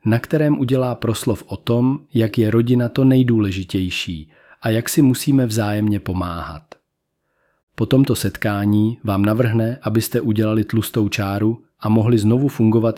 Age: 40-59